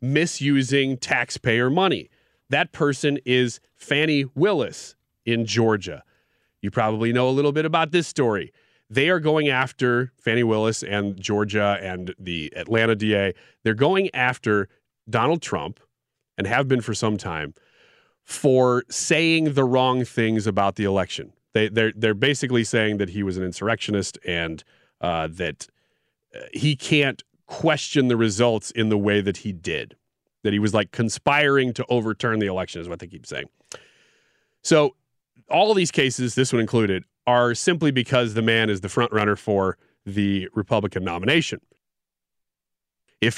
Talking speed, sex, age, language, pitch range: 150 wpm, male, 30-49, English, 100-130 Hz